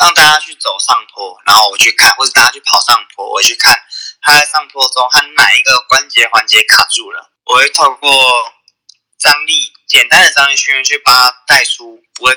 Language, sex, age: Chinese, male, 20-39